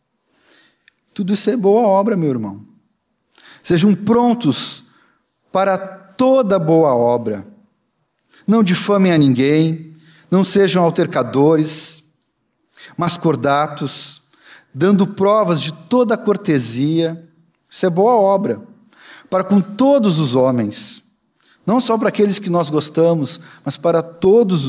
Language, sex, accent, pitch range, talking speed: Portuguese, male, Brazilian, 155-210 Hz, 110 wpm